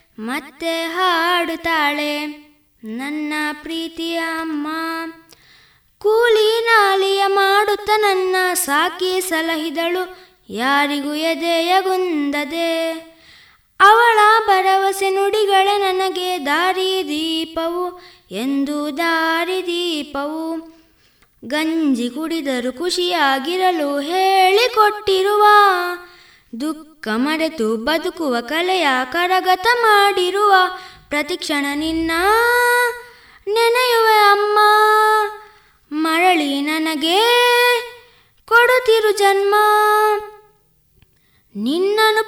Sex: female